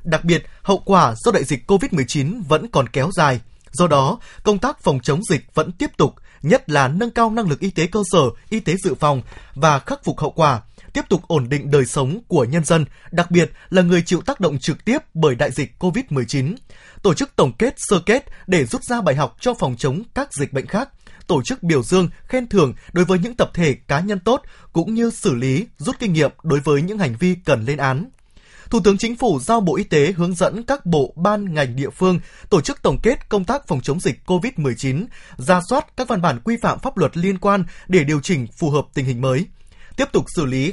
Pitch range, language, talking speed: 145-210 Hz, Vietnamese, 235 wpm